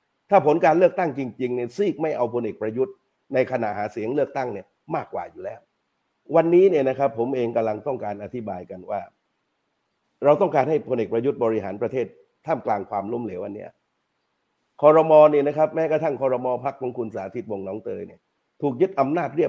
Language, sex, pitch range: Thai, male, 120-160 Hz